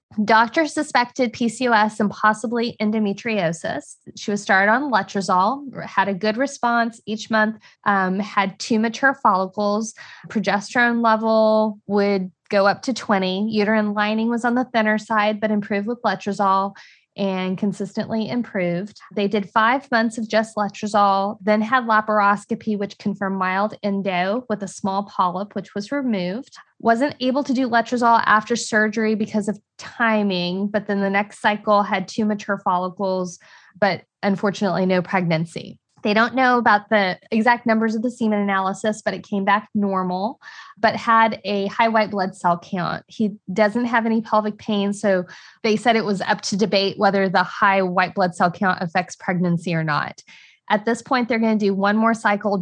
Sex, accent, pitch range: female, American, 195-225 Hz